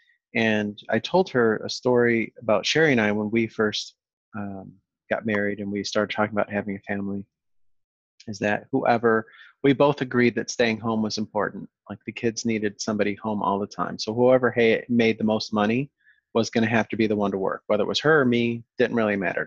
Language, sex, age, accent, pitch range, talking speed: English, male, 30-49, American, 105-125 Hz, 215 wpm